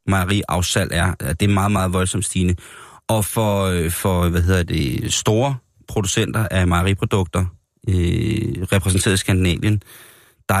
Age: 30-49